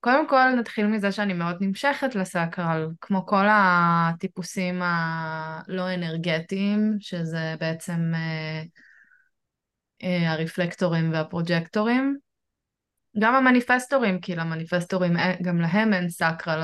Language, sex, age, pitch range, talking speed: Hebrew, female, 20-39, 165-200 Hz, 95 wpm